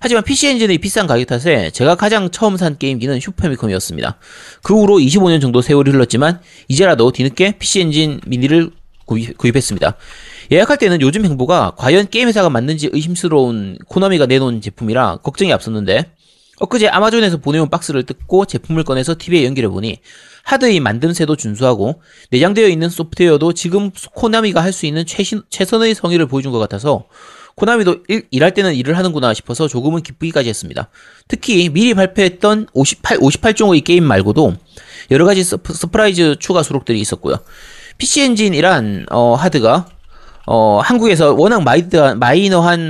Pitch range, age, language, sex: 130-195 Hz, 30-49, Korean, male